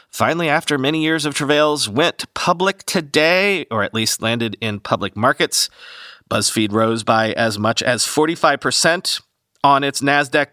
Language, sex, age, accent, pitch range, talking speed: English, male, 40-59, American, 140-185 Hz, 150 wpm